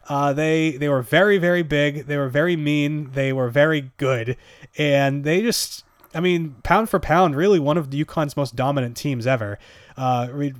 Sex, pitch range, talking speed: male, 135-170 Hz, 180 wpm